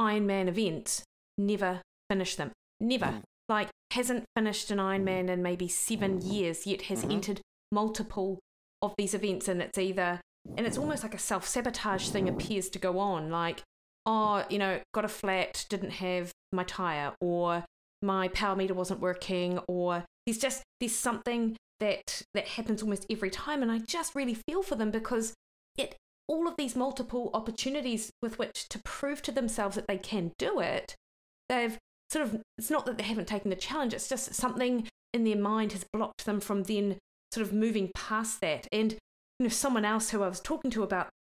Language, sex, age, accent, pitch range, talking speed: English, female, 20-39, British, 190-225 Hz, 185 wpm